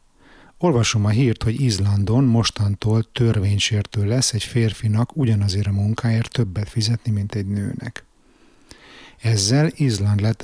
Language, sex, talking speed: Hungarian, male, 120 wpm